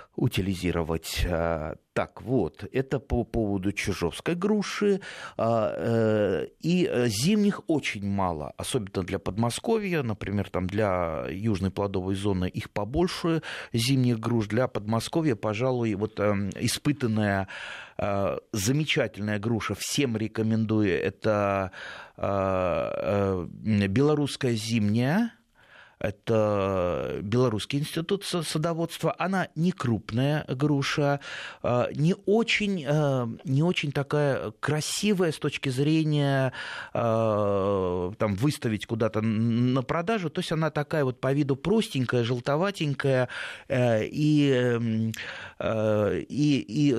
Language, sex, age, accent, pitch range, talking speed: Russian, male, 30-49, native, 105-150 Hz, 90 wpm